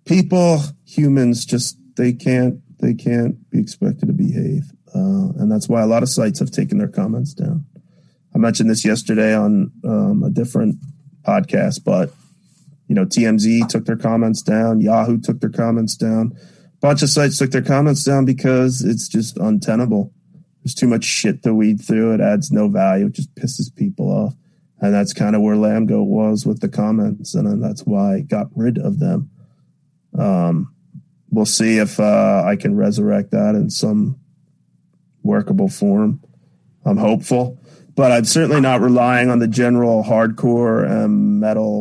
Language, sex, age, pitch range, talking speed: English, male, 30-49, 125-190 Hz, 170 wpm